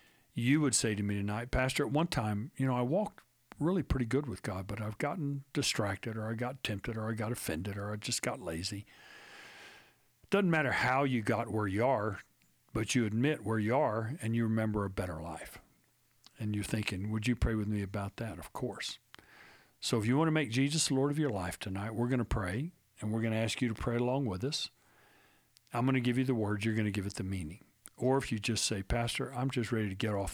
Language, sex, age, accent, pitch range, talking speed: English, male, 50-69, American, 100-125 Hz, 245 wpm